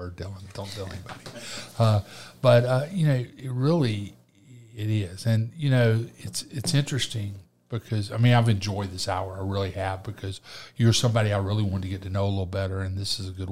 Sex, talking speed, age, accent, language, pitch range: male, 210 wpm, 50-69, American, English, 100-115 Hz